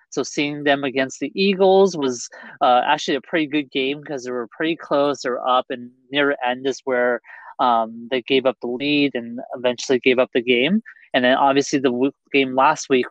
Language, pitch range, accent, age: English, 125-145 Hz, American, 20-39